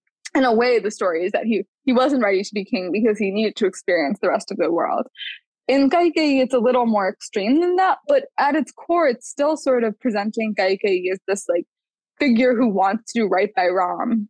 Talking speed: 225 wpm